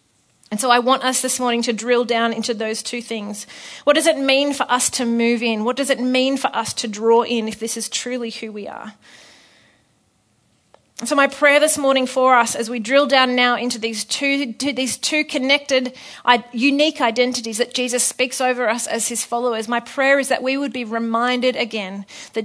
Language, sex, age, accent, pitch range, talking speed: English, female, 30-49, Australian, 230-270 Hz, 205 wpm